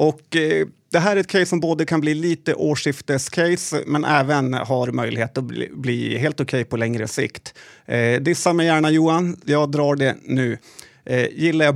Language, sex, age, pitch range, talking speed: Swedish, male, 30-49, 135-160 Hz, 200 wpm